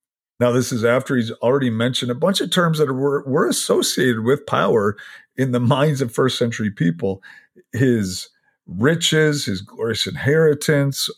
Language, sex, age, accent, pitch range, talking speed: English, male, 50-69, American, 105-135 Hz, 155 wpm